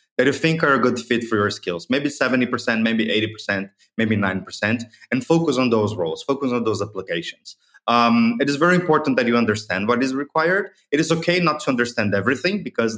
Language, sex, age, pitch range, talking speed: German, male, 30-49, 110-150 Hz, 205 wpm